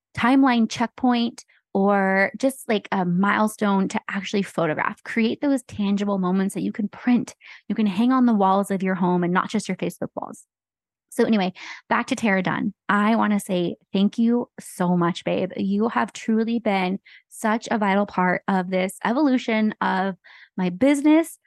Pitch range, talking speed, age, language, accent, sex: 190-230 Hz, 175 wpm, 20-39, English, American, female